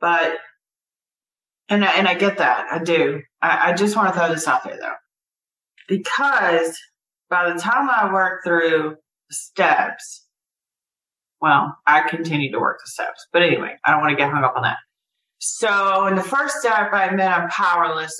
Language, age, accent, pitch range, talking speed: English, 30-49, American, 160-200 Hz, 180 wpm